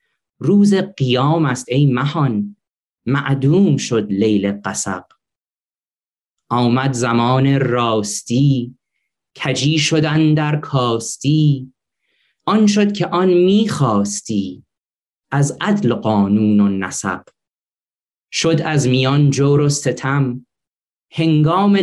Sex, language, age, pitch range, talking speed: male, Persian, 30-49, 110-155 Hz, 90 wpm